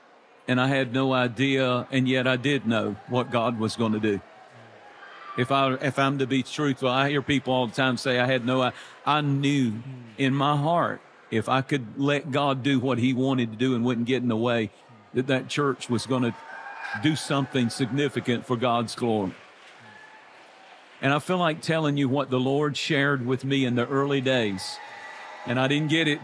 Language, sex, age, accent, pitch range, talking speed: English, male, 50-69, American, 125-145 Hz, 205 wpm